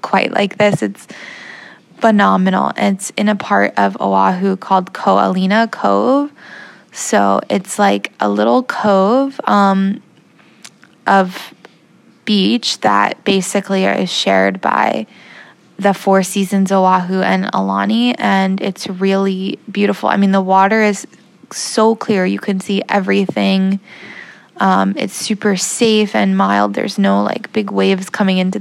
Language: English